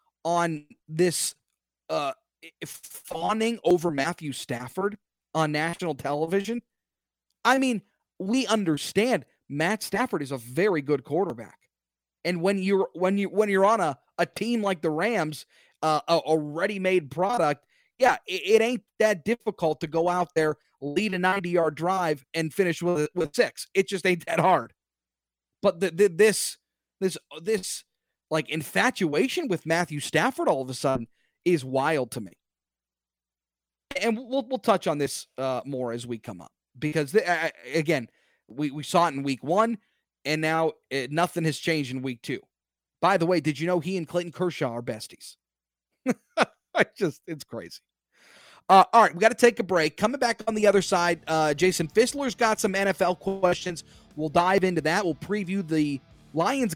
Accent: American